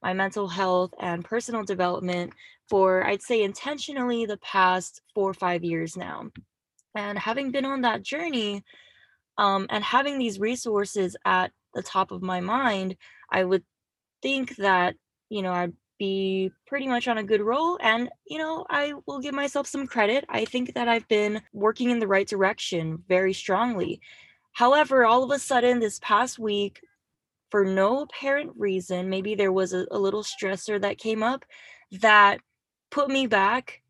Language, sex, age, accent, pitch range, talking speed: English, female, 20-39, American, 190-240 Hz, 165 wpm